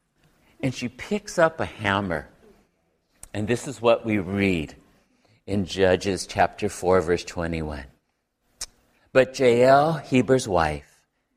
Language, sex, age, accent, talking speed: English, male, 50-69, American, 115 wpm